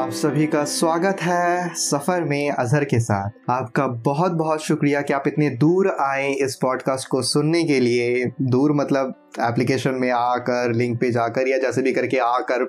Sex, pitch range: male, 130-175 Hz